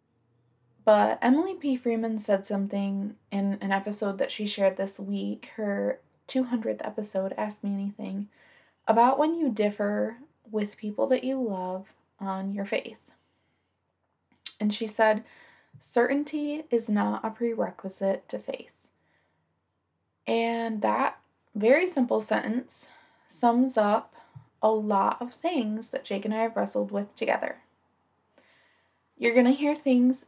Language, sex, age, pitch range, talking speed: English, female, 20-39, 200-245 Hz, 130 wpm